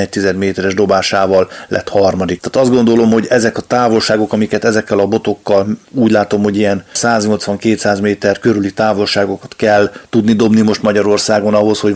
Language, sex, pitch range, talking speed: Hungarian, male, 100-110 Hz, 150 wpm